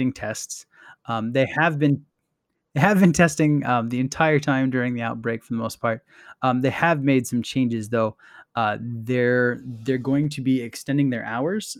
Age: 20-39